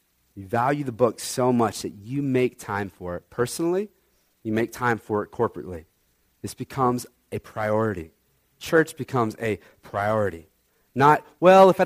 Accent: American